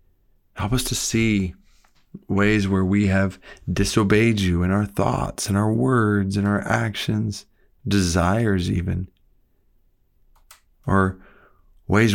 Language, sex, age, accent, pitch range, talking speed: English, male, 40-59, American, 95-110 Hz, 115 wpm